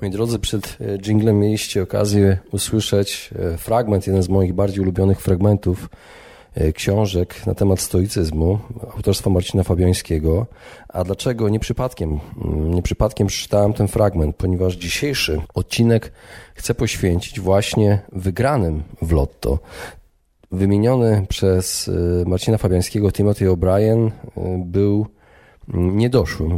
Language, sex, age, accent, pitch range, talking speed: Polish, male, 40-59, native, 90-105 Hz, 105 wpm